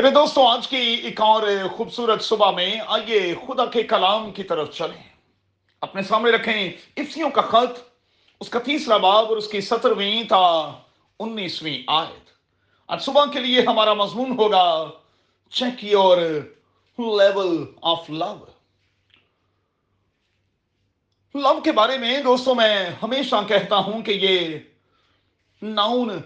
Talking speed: 100 wpm